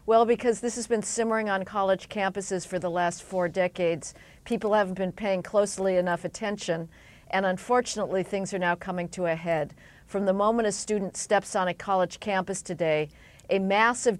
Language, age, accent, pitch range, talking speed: English, 50-69, American, 180-220 Hz, 180 wpm